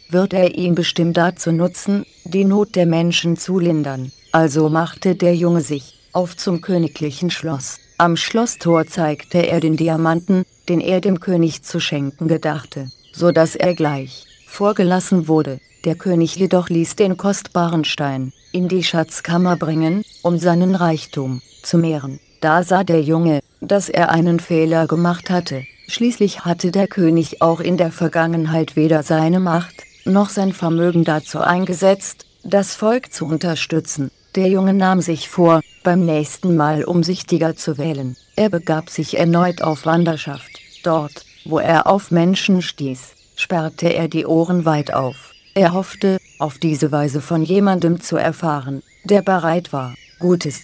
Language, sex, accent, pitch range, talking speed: German, female, German, 155-180 Hz, 150 wpm